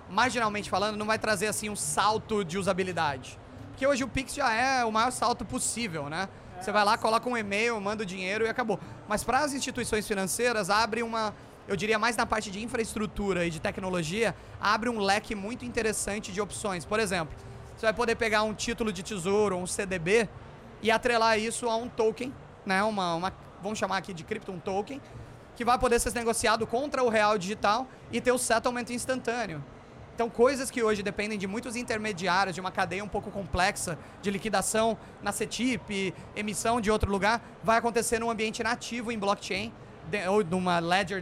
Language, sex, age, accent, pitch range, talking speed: Portuguese, male, 20-39, Brazilian, 195-230 Hz, 190 wpm